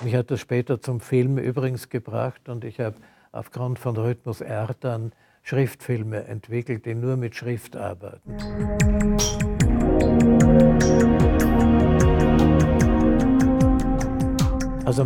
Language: German